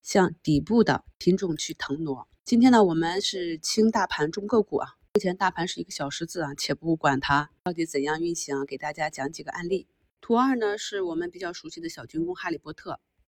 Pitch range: 160-205 Hz